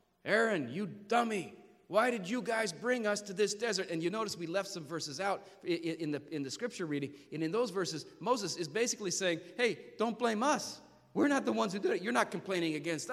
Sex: male